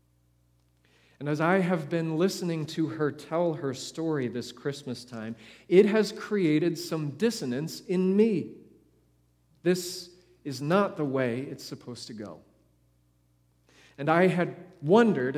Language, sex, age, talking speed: English, male, 40-59, 135 wpm